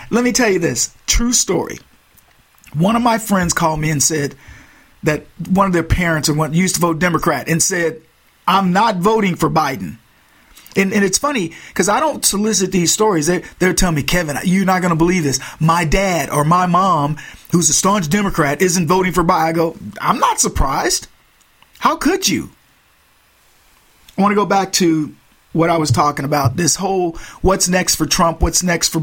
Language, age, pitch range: English, 50-69, 155-200 Hz